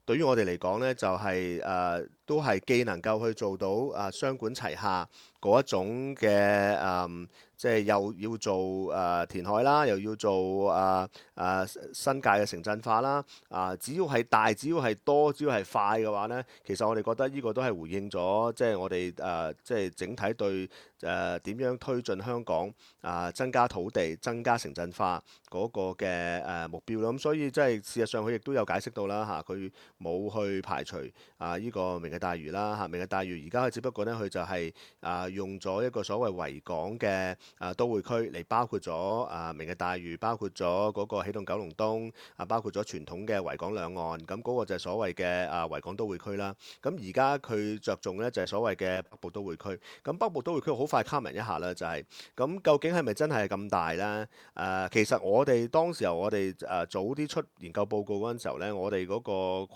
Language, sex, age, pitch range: English, male, 30-49, 95-115 Hz